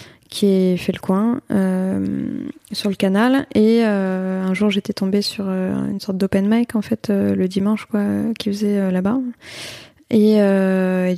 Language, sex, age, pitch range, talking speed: French, female, 20-39, 180-210 Hz, 190 wpm